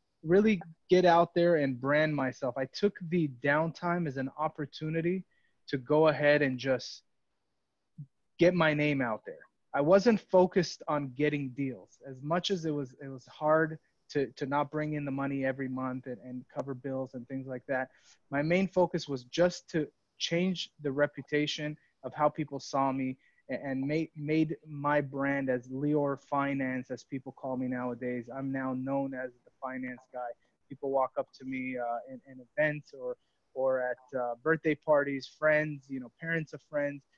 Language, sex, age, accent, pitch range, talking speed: English, male, 30-49, American, 135-160 Hz, 180 wpm